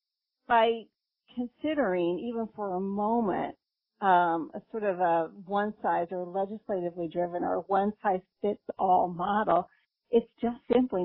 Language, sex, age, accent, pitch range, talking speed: English, female, 40-59, American, 180-220 Hz, 115 wpm